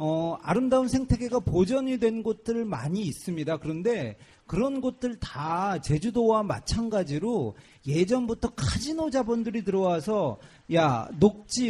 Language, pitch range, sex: Korean, 150-235 Hz, male